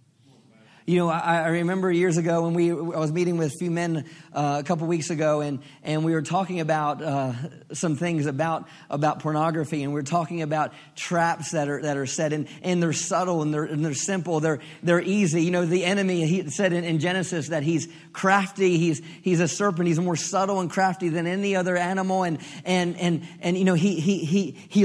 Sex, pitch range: male, 160-190 Hz